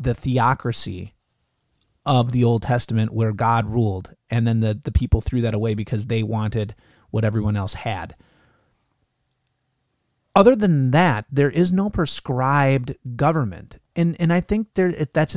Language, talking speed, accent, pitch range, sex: English, 150 wpm, American, 115-155 Hz, male